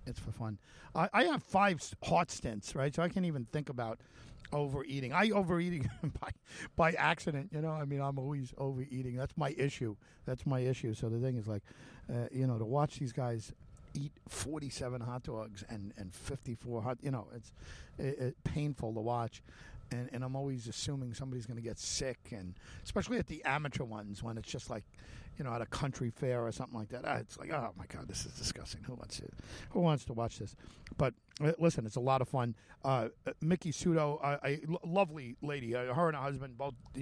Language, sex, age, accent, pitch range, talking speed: English, male, 50-69, American, 115-150 Hz, 210 wpm